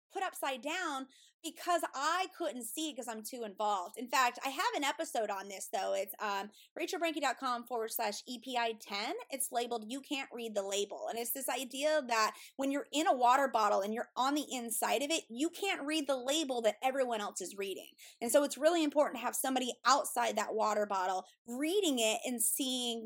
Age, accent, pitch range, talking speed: 20-39, American, 230-295 Hz, 205 wpm